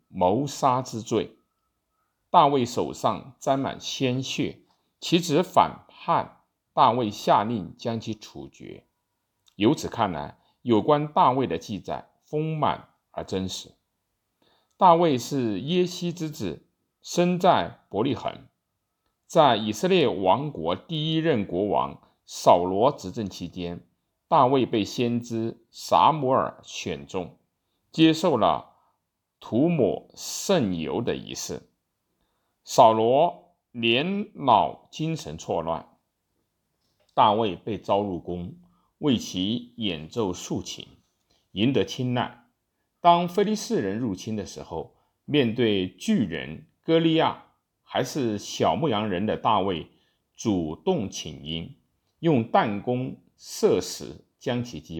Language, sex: Chinese, male